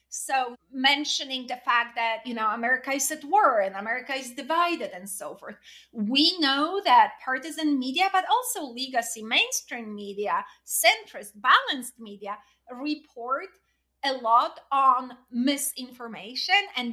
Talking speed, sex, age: 130 wpm, female, 30-49